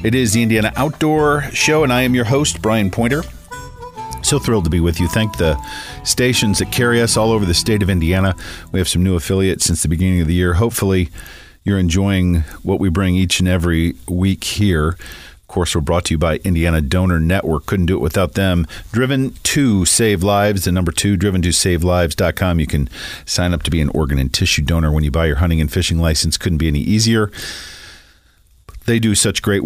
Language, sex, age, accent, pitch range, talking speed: English, male, 40-59, American, 85-105 Hz, 215 wpm